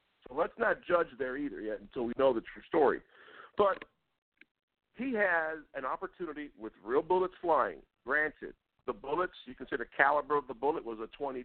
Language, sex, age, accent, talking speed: English, male, 50-69, American, 185 wpm